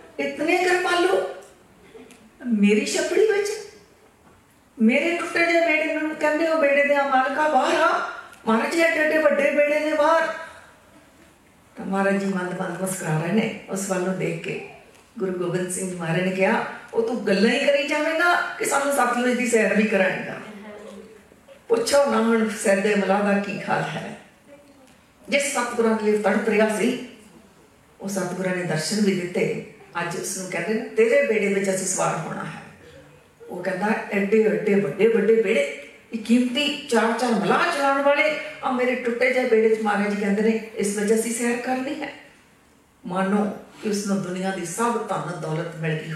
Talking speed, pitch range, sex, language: 160 wpm, 190-265 Hz, female, Punjabi